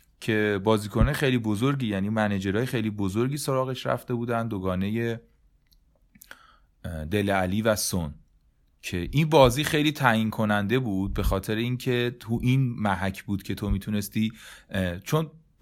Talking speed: 130 wpm